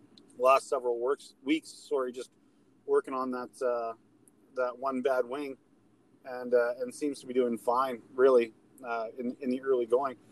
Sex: male